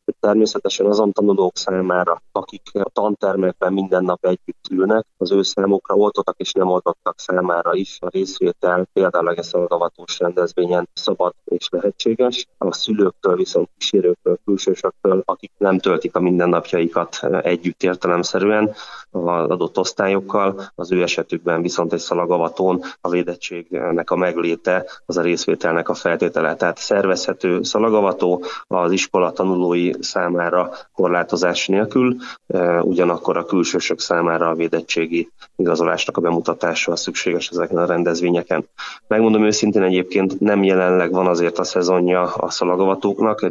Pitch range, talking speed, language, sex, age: 85-95 Hz, 130 wpm, Hungarian, male, 20-39